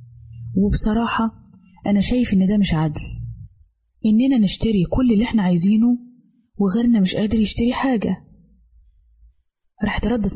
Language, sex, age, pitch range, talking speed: Arabic, female, 20-39, 180-235 Hz, 115 wpm